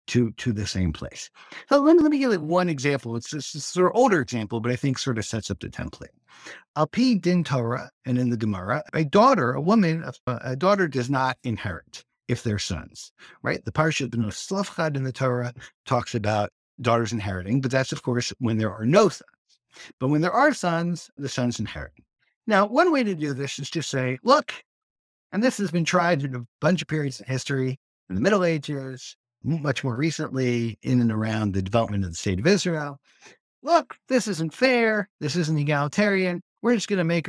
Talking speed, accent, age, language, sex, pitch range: 210 wpm, American, 60-79, English, male, 125-180 Hz